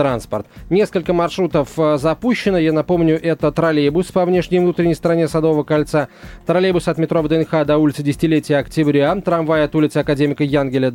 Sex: male